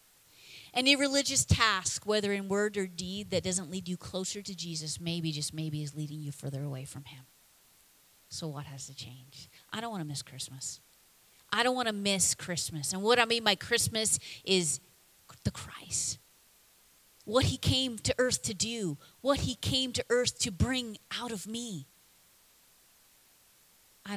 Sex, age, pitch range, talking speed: female, 30-49, 145-185 Hz, 170 wpm